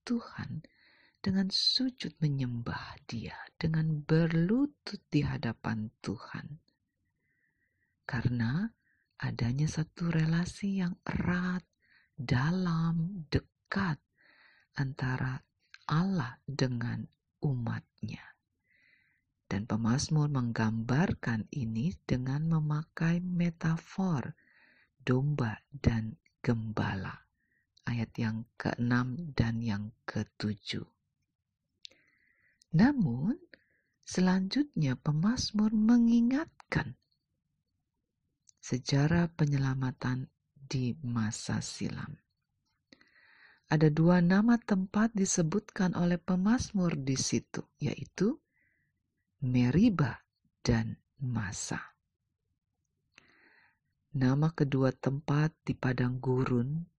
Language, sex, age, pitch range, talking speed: Indonesian, female, 40-59, 125-175 Hz, 70 wpm